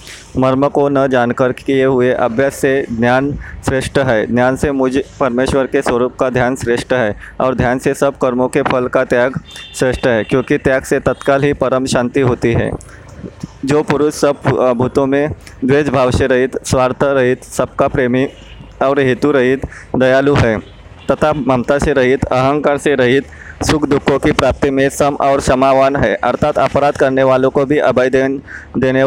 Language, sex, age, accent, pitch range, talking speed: Hindi, male, 20-39, native, 130-145 Hz, 170 wpm